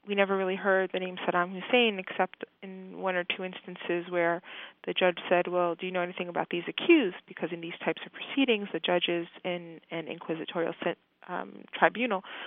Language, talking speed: English, 185 wpm